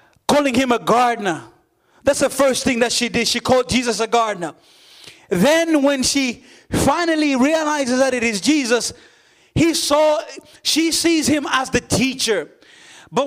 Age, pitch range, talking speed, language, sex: 30-49, 240-315 Hz, 155 wpm, English, male